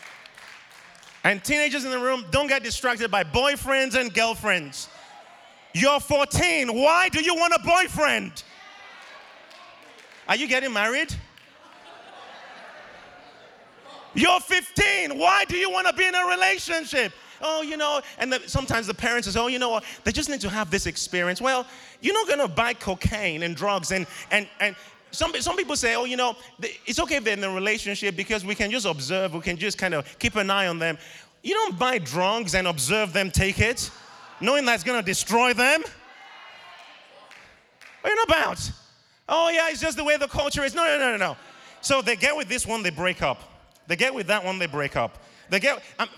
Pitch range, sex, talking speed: 195-290 Hz, male, 200 wpm